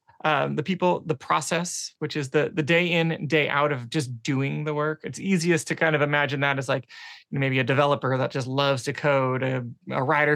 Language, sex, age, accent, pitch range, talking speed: English, male, 20-39, American, 135-165 Hz, 230 wpm